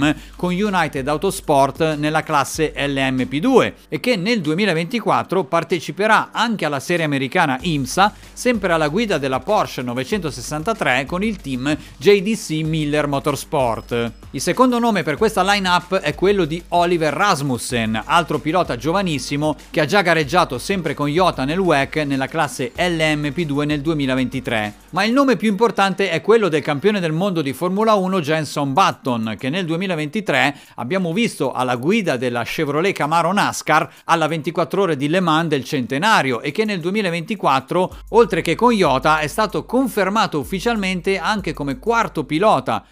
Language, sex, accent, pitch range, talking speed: Italian, male, native, 145-195 Hz, 150 wpm